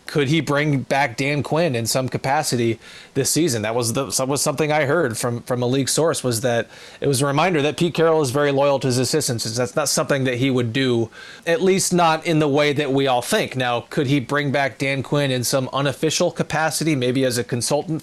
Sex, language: male, English